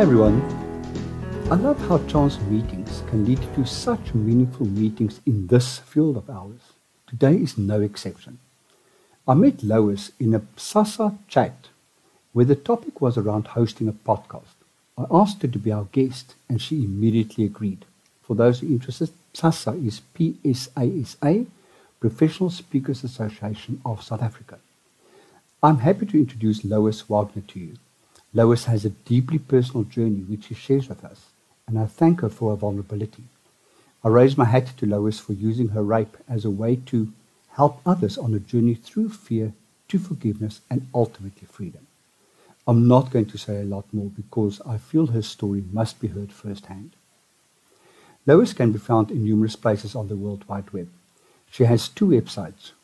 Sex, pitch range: male, 105-135 Hz